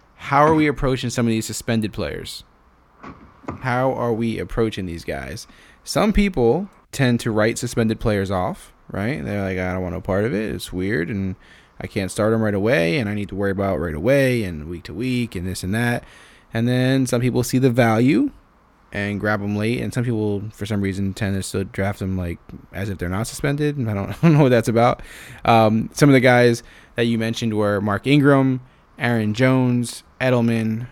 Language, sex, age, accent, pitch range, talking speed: English, male, 20-39, American, 100-125 Hz, 210 wpm